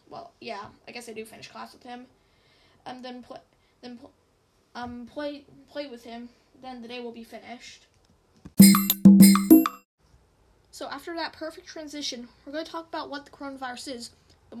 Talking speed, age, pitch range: 170 wpm, 10-29, 230-280 Hz